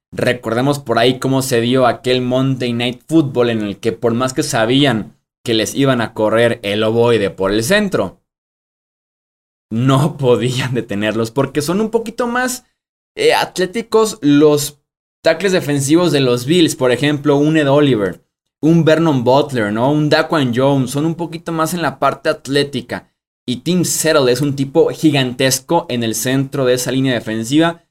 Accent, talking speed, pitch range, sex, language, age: Mexican, 165 wpm, 110-150 Hz, male, Spanish, 20-39